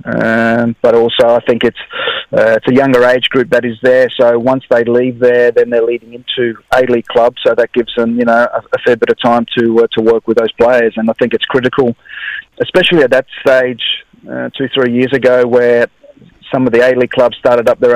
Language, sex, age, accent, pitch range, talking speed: English, male, 30-49, Australian, 120-130 Hz, 225 wpm